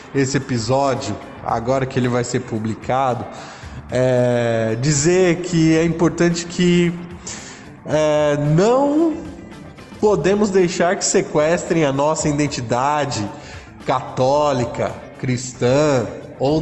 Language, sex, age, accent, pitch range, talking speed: Portuguese, male, 20-39, Brazilian, 130-180 Hz, 85 wpm